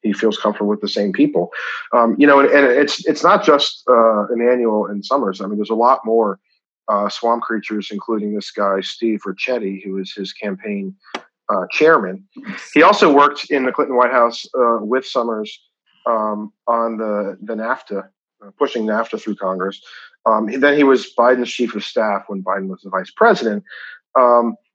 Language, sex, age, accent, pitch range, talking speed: English, male, 40-59, American, 105-135 Hz, 185 wpm